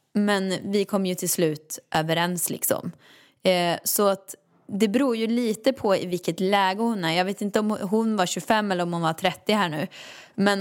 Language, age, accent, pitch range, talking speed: Swedish, 20-39, native, 180-230 Hz, 205 wpm